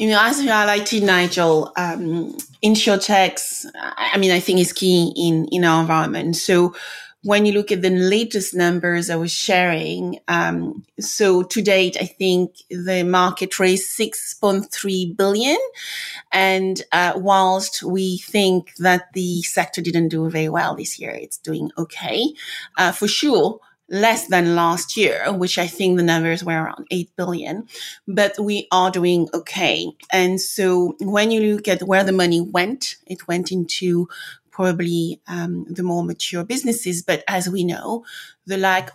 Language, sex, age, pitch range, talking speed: English, female, 30-49, 175-200 Hz, 160 wpm